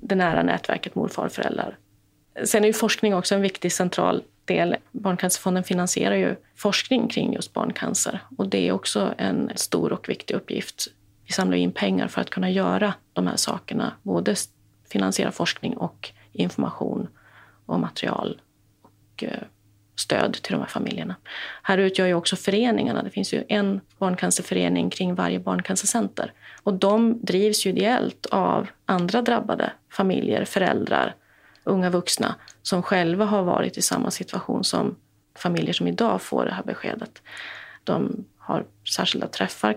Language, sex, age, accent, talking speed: Swedish, female, 30-49, native, 145 wpm